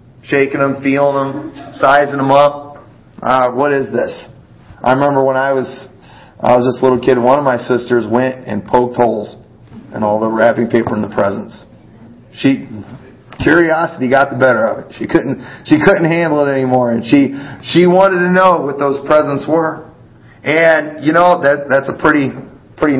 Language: English